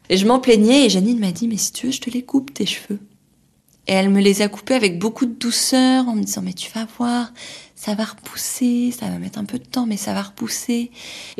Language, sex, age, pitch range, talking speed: French, female, 20-39, 180-235 Hz, 280 wpm